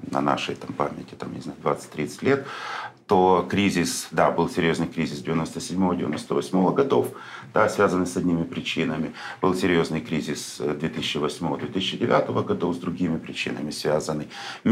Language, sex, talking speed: Russian, male, 125 wpm